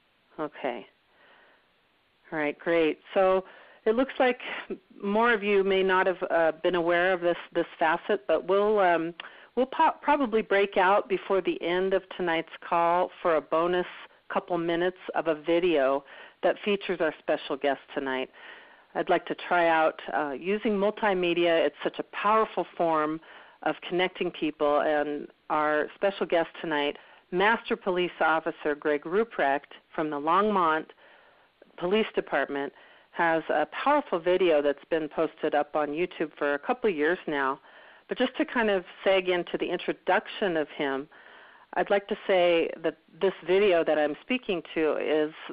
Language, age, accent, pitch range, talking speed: English, 40-59, American, 155-195 Hz, 155 wpm